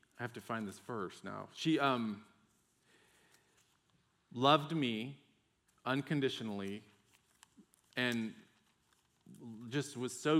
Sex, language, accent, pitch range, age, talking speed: male, English, American, 105-130 Hz, 40-59, 90 wpm